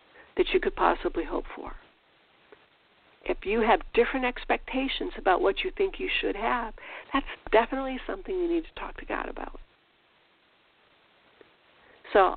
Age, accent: 60-79, American